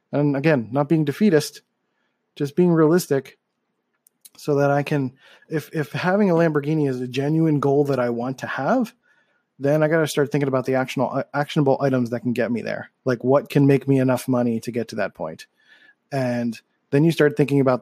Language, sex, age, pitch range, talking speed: English, male, 30-49, 130-160 Hz, 200 wpm